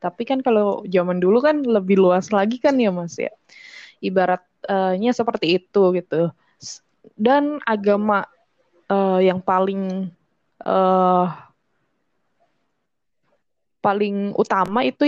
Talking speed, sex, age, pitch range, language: 105 wpm, female, 10-29, 190-240 Hz, Indonesian